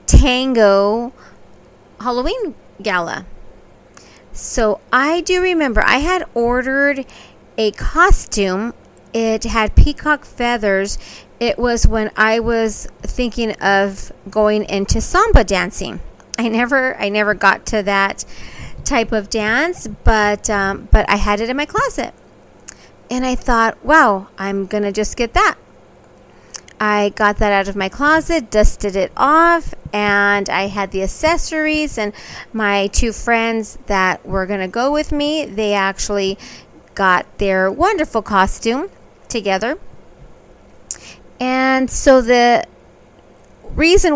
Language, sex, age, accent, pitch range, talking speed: English, female, 30-49, American, 205-260 Hz, 125 wpm